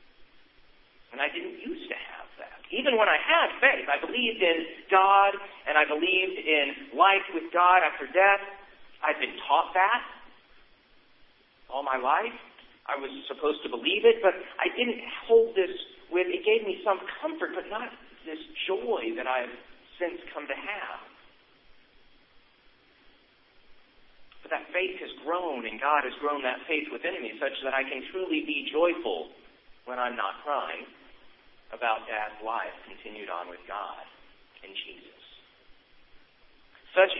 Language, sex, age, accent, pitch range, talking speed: English, male, 50-69, American, 150-230 Hz, 150 wpm